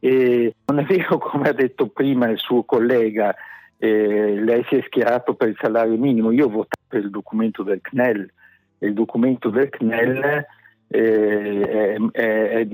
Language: Italian